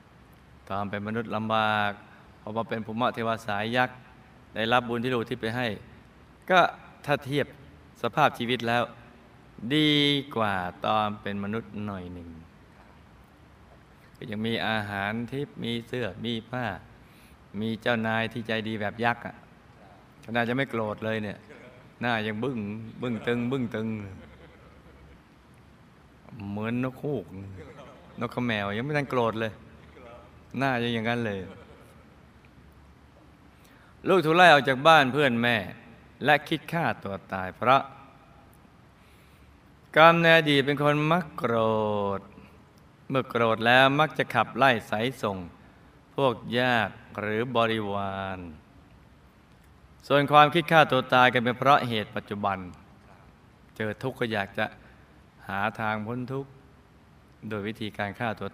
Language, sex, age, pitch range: Thai, male, 20-39, 100-125 Hz